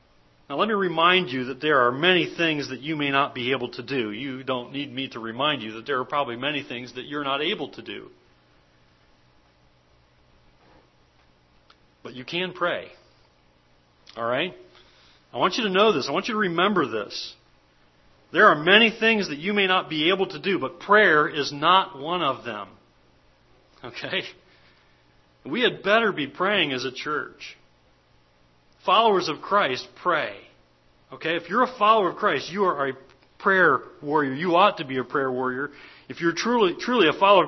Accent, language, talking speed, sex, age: American, English, 180 wpm, male, 40-59